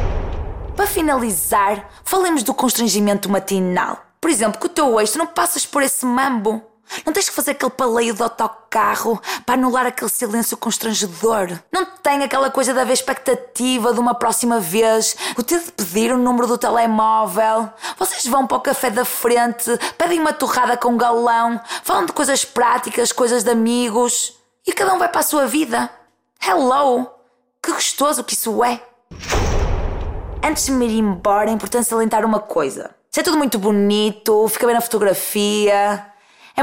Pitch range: 215-260 Hz